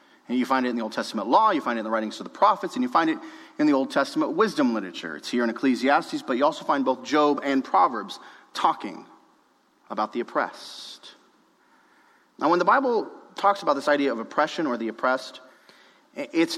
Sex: male